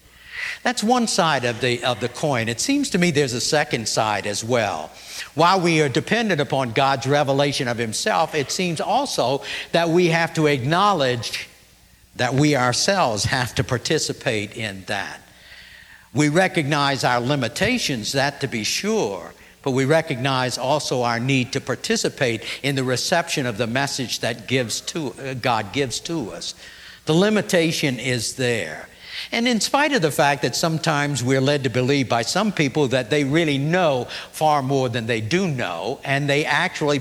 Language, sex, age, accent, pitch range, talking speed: English, male, 60-79, American, 125-165 Hz, 170 wpm